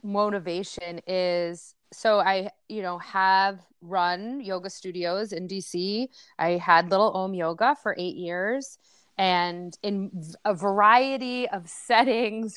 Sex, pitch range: female, 180-225 Hz